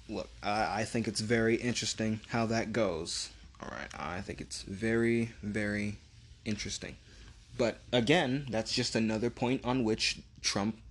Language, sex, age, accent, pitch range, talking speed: English, male, 20-39, American, 105-125 Hz, 145 wpm